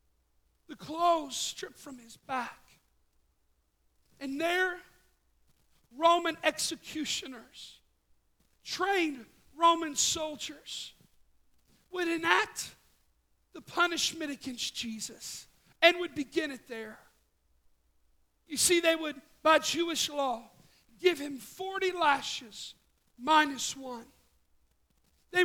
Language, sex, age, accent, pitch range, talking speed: English, male, 50-69, American, 245-335 Hz, 90 wpm